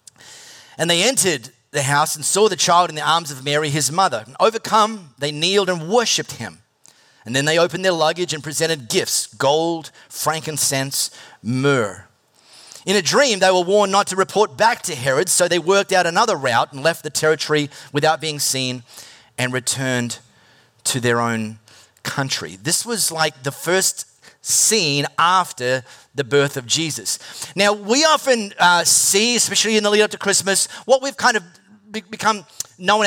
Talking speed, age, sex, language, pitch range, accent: 170 wpm, 30-49, male, English, 145-200 Hz, Australian